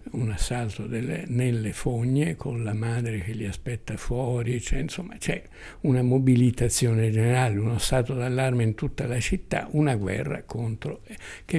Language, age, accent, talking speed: Italian, 60-79, native, 140 wpm